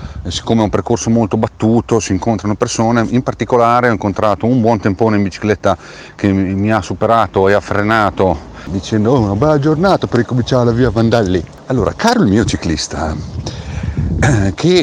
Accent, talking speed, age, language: native, 160 wpm, 40-59, Italian